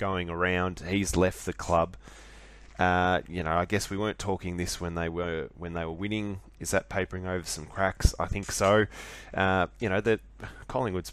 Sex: male